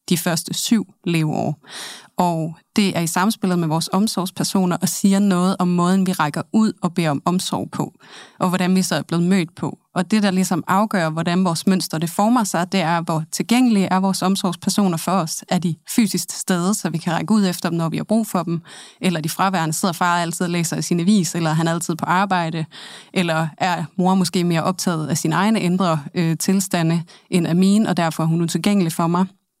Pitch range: 165-190 Hz